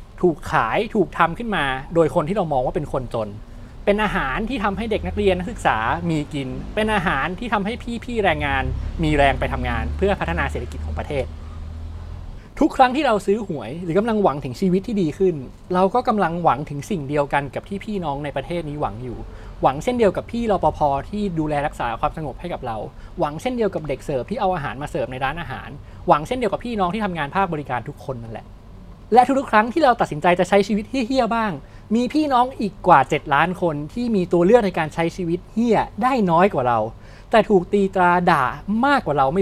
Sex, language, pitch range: male, Thai, 135-210 Hz